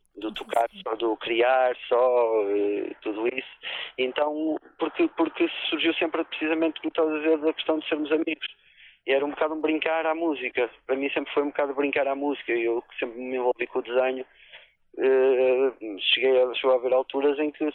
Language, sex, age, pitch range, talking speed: Portuguese, male, 20-39, 120-155 Hz, 170 wpm